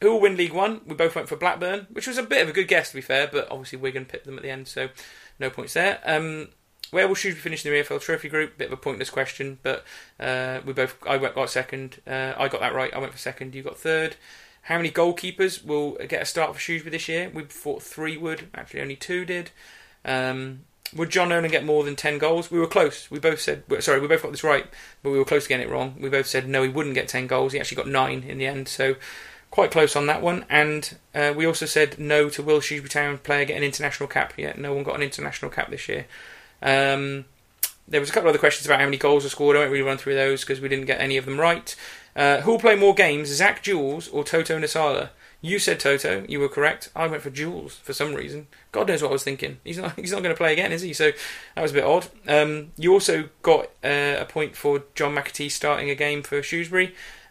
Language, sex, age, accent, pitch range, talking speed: English, male, 30-49, British, 140-165 Hz, 265 wpm